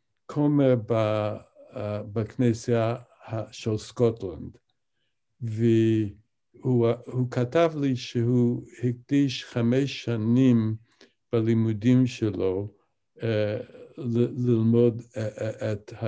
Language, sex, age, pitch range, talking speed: Hebrew, male, 60-79, 110-125 Hz, 75 wpm